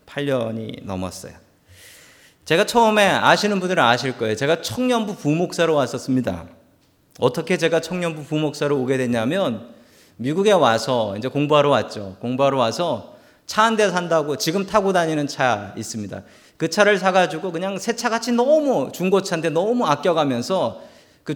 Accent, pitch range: native, 125-200 Hz